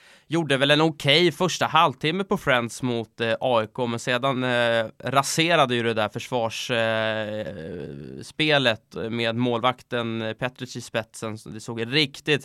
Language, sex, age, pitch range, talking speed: English, male, 20-39, 115-140 Hz, 135 wpm